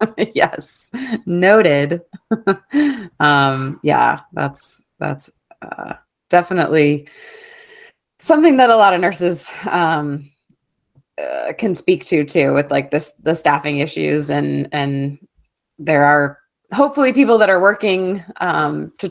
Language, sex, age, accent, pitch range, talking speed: English, female, 20-39, American, 145-185 Hz, 115 wpm